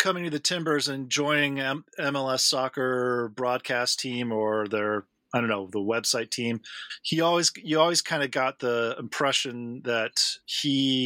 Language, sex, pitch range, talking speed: English, male, 120-140 Hz, 155 wpm